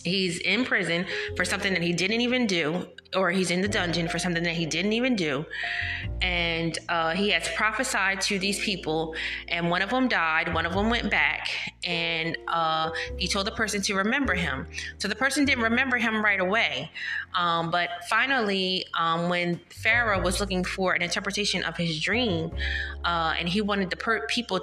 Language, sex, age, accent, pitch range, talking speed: English, female, 30-49, American, 170-215 Hz, 190 wpm